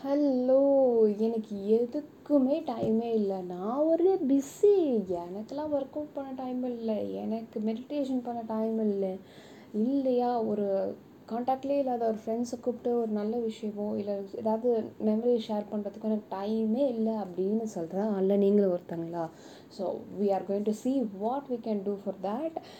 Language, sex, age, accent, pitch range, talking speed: Tamil, female, 20-39, native, 200-245 Hz, 140 wpm